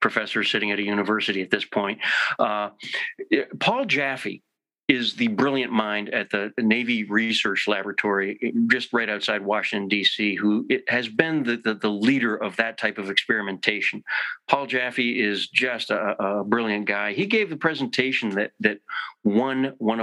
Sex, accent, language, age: male, American, English, 40-59